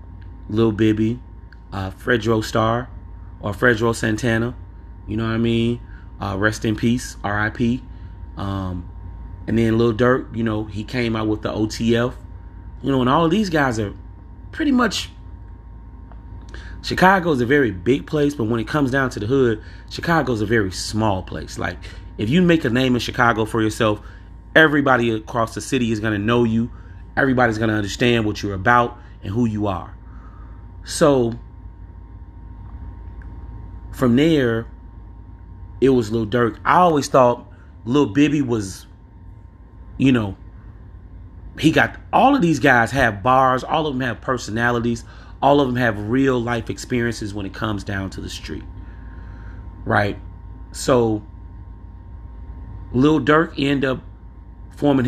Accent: American